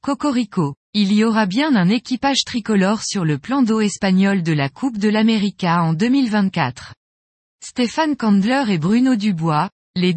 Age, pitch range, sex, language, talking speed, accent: 20-39, 180-245 Hz, female, French, 155 wpm, French